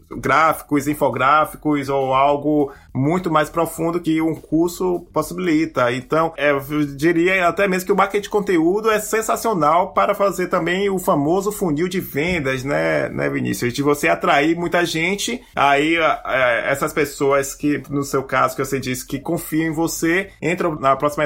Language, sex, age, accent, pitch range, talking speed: Portuguese, male, 20-39, Brazilian, 145-180 Hz, 160 wpm